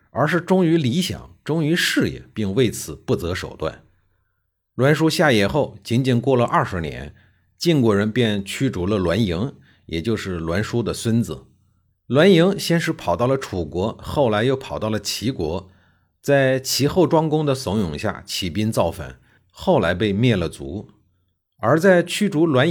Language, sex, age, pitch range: Chinese, male, 50-69, 90-135 Hz